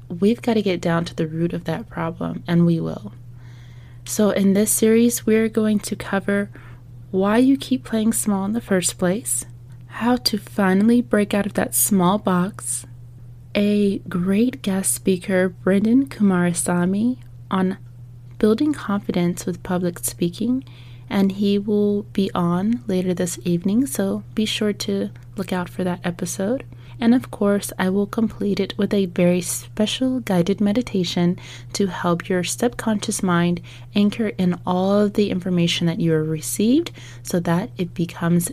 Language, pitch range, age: English, 165-205 Hz, 20-39